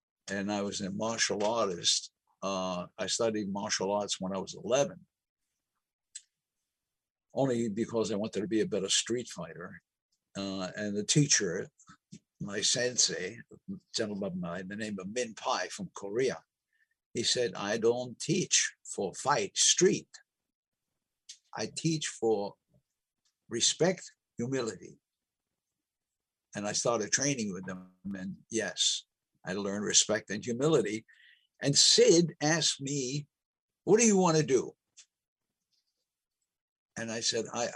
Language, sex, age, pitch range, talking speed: English, male, 60-79, 105-155 Hz, 125 wpm